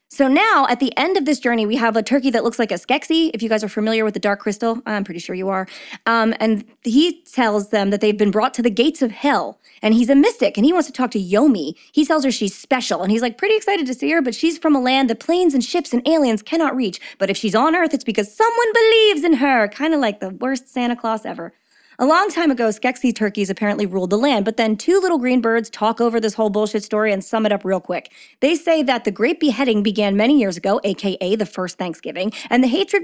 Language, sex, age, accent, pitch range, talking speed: English, female, 20-39, American, 210-285 Hz, 265 wpm